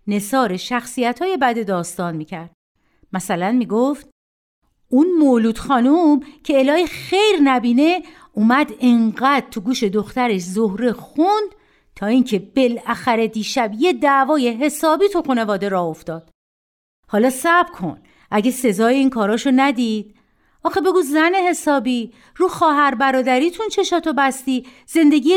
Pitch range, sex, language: 210-295 Hz, female, Persian